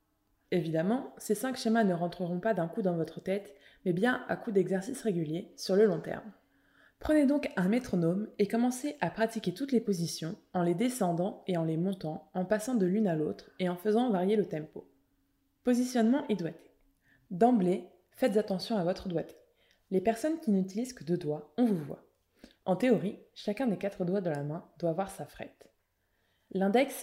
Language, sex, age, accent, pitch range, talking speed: French, female, 20-39, French, 175-225 Hz, 190 wpm